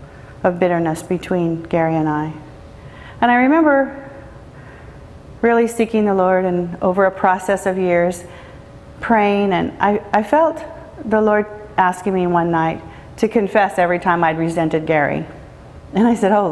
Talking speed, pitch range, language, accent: 150 wpm, 160-200 Hz, English, American